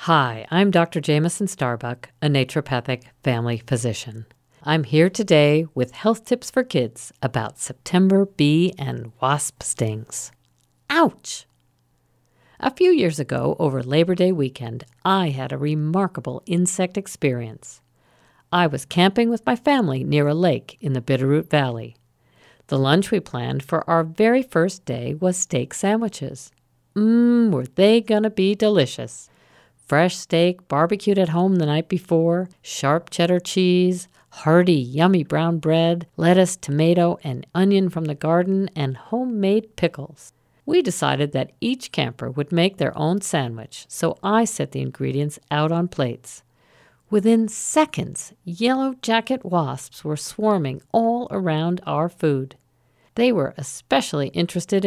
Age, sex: 50-69, female